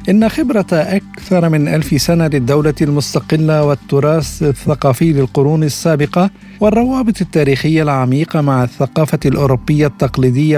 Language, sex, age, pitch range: Arabic, male, 50-69, 140-175 Hz